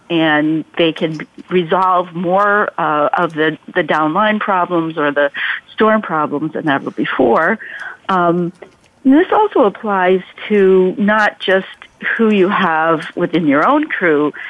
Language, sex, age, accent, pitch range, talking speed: English, female, 50-69, American, 155-200 Hz, 130 wpm